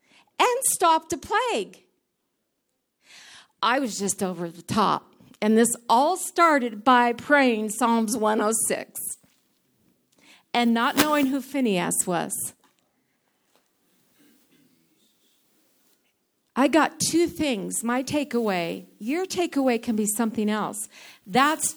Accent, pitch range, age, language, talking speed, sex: American, 220-290 Hz, 50-69, English, 100 wpm, female